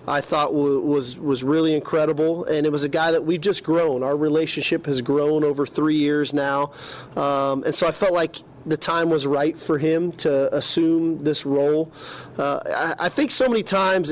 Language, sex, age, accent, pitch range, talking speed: English, male, 40-59, American, 145-165 Hz, 200 wpm